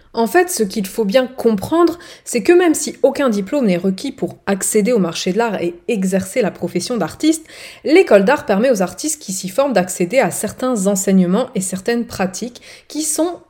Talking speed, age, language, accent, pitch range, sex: 190 wpm, 30-49, French, French, 190-280 Hz, female